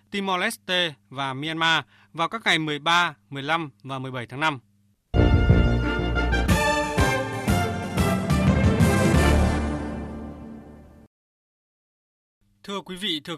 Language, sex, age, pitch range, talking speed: Vietnamese, male, 20-39, 105-165 Hz, 70 wpm